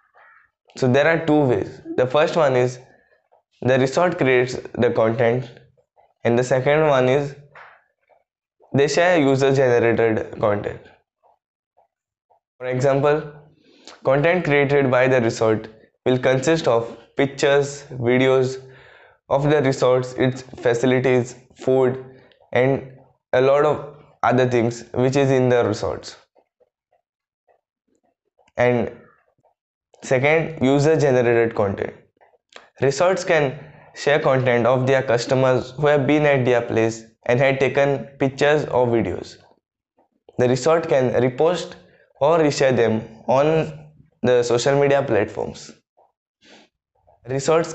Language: English